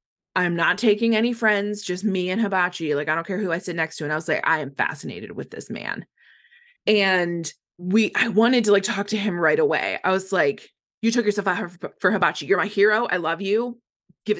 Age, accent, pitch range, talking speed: 20-39, American, 170-215 Hz, 235 wpm